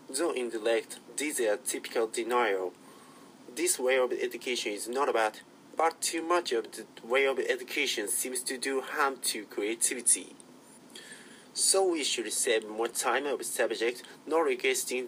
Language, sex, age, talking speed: English, male, 30-49, 150 wpm